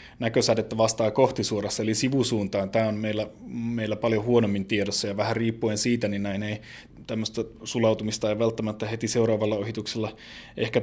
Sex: male